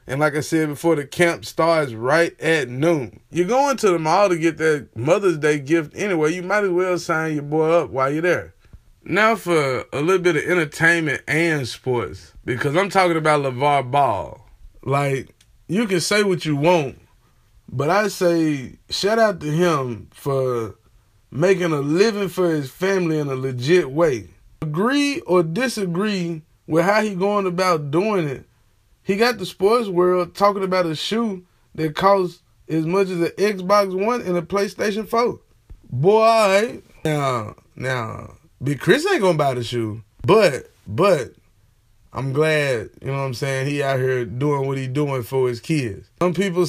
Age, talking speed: 20-39, 175 wpm